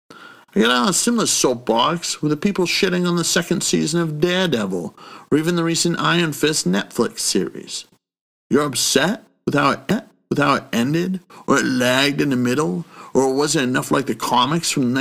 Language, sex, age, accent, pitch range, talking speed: English, male, 50-69, American, 140-185 Hz, 185 wpm